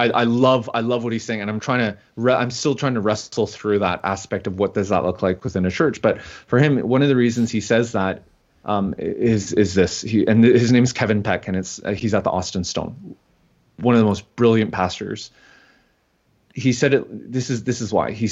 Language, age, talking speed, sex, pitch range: English, 20-39, 235 wpm, male, 110-130 Hz